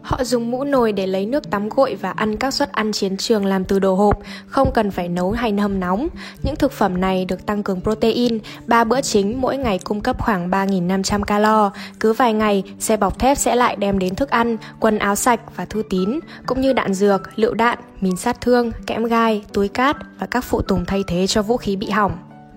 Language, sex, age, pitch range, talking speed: Vietnamese, female, 10-29, 195-235 Hz, 230 wpm